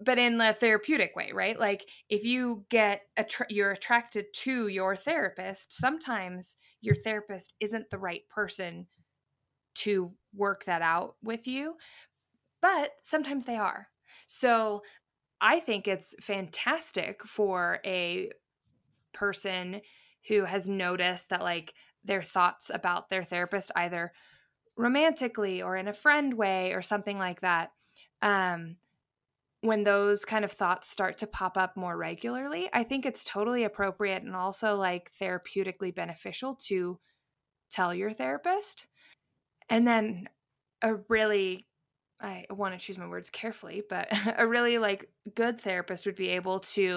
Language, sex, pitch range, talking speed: English, female, 180-220 Hz, 140 wpm